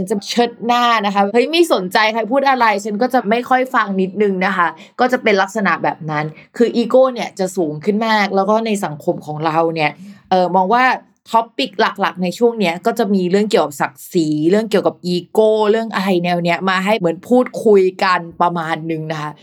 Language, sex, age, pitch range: Thai, female, 20-39, 185-240 Hz